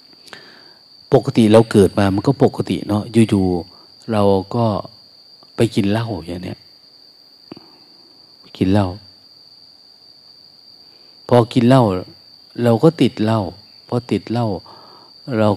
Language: Thai